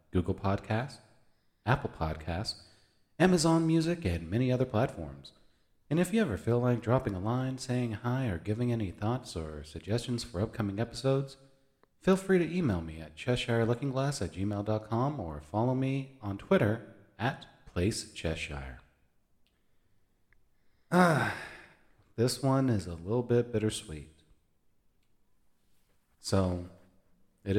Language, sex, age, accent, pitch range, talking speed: English, male, 30-49, American, 85-115 Hz, 120 wpm